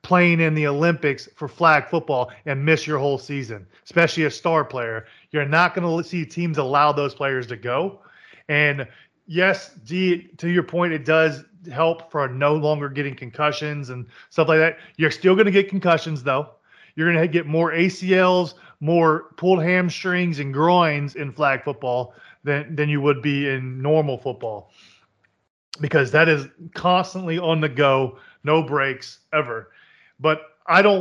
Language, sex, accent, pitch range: English, male, American, 140-170 Hz